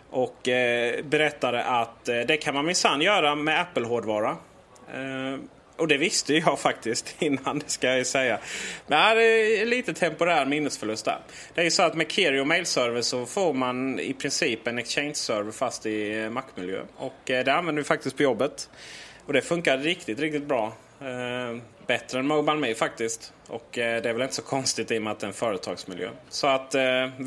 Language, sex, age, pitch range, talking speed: Swedish, male, 30-49, 120-150 Hz, 180 wpm